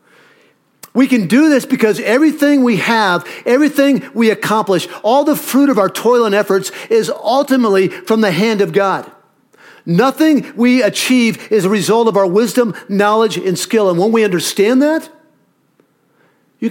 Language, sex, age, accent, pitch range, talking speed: English, male, 50-69, American, 175-235 Hz, 160 wpm